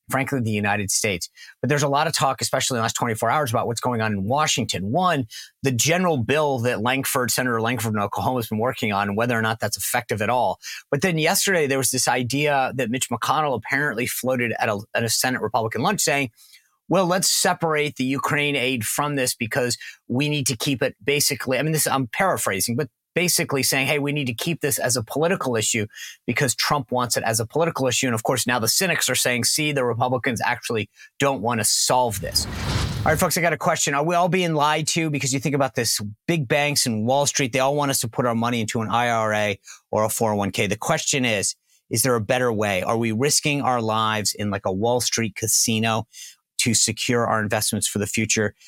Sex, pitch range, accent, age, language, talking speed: male, 115-145 Hz, American, 30-49, English, 225 wpm